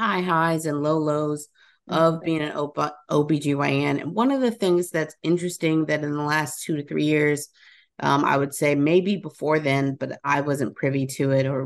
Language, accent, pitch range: English, American, 135-160 Hz